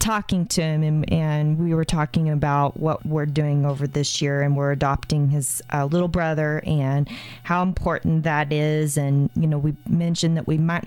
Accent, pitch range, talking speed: American, 145-180 Hz, 195 wpm